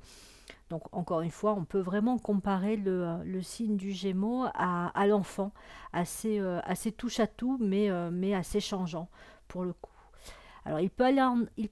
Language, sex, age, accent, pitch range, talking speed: French, female, 50-69, French, 175-215 Hz, 145 wpm